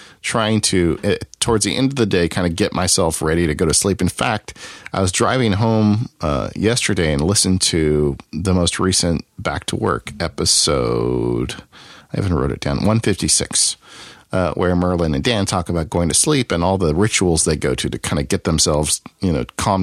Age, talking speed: 50-69, 200 wpm